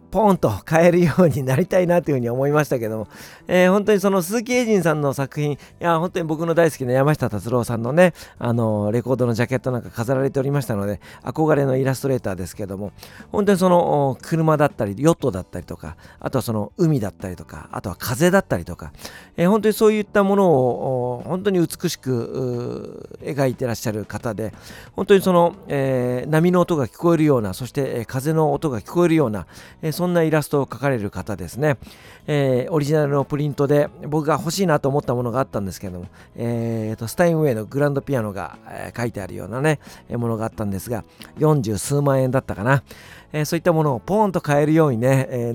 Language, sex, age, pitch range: Japanese, male, 40-59, 110-155 Hz